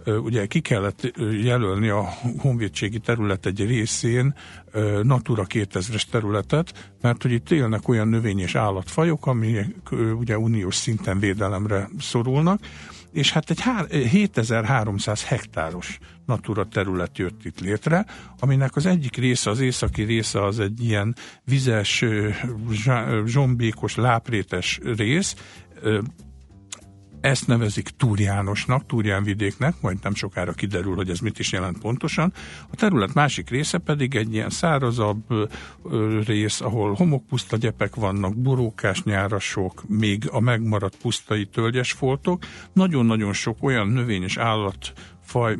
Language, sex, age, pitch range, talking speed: Hungarian, male, 50-69, 100-125 Hz, 120 wpm